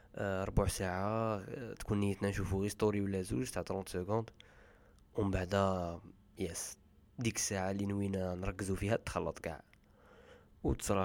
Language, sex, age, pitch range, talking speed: Arabic, male, 20-39, 95-115 Hz, 135 wpm